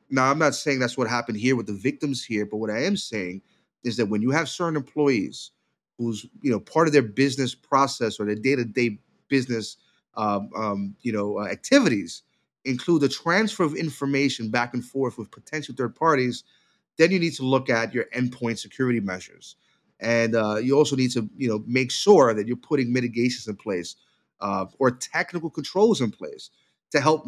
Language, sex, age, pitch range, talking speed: English, male, 30-49, 115-145 Hz, 195 wpm